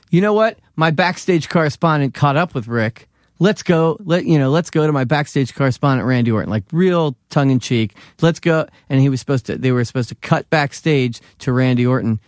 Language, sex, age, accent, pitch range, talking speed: English, male, 30-49, American, 110-140 Hz, 215 wpm